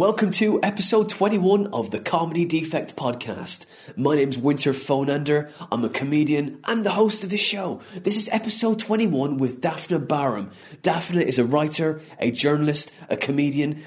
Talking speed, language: 160 wpm, English